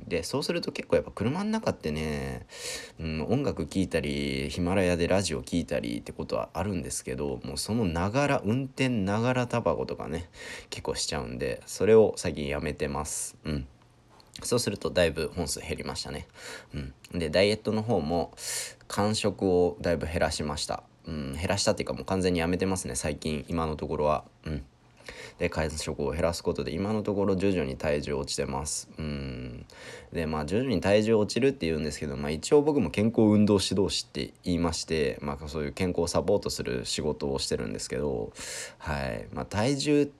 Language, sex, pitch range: Japanese, male, 75-110 Hz